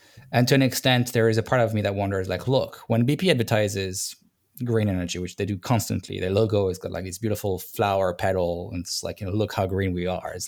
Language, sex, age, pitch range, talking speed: English, male, 20-39, 100-120 Hz, 245 wpm